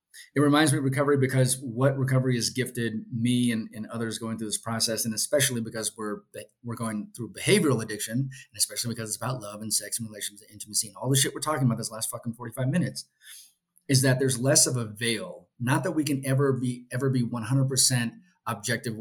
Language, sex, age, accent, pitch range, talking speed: English, male, 30-49, American, 115-135 Hz, 215 wpm